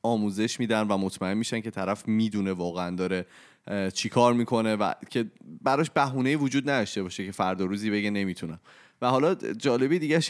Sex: male